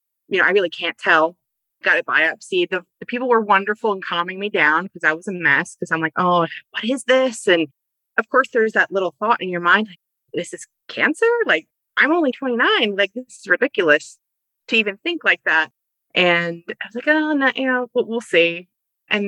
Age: 30-49